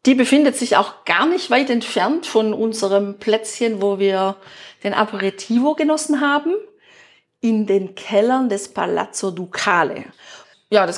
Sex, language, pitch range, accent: female, German, 190-250 Hz, German